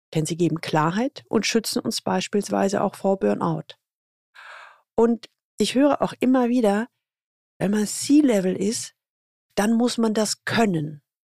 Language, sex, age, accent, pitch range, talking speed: German, female, 40-59, German, 180-240 Hz, 140 wpm